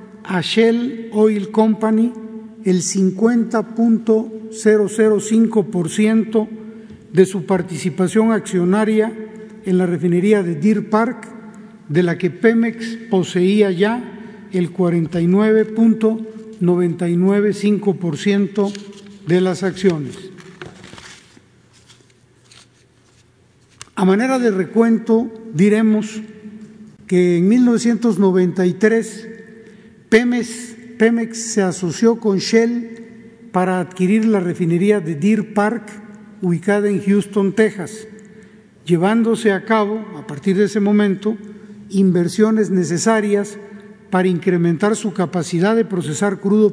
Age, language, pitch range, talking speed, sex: 50-69, Spanish, 185-220 Hz, 90 wpm, male